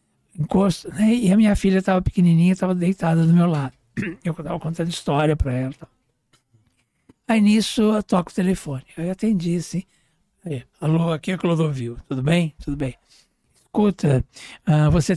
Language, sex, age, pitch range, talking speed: Portuguese, male, 60-79, 150-195 Hz, 160 wpm